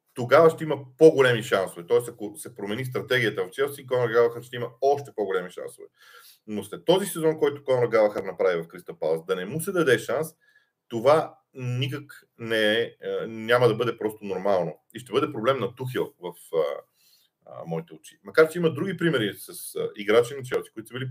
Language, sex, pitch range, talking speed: Bulgarian, male, 125-185 Hz, 190 wpm